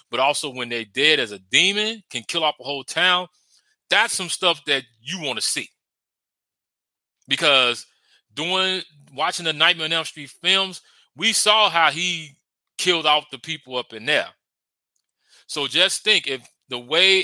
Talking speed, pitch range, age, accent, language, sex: 165 wpm, 130-180 Hz, 30-49, American, English, male